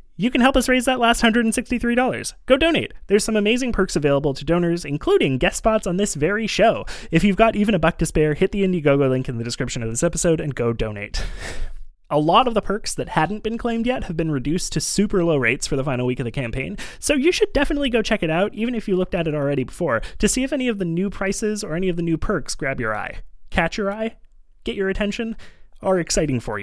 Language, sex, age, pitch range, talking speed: English, male, 20-39, 140-215 Hz, 250 wpm